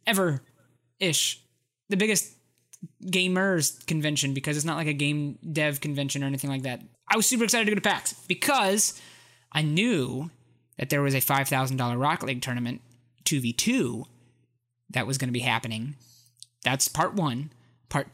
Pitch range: 135-180 Hz